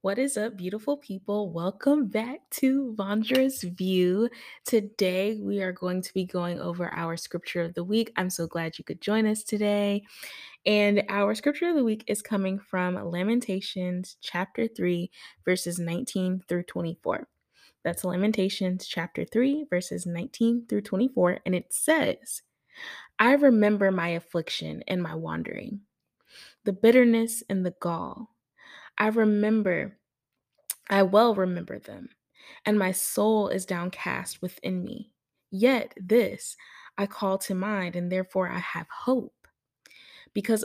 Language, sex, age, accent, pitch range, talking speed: English, female, 20-39, American, 180-220 Hz, 140 wpm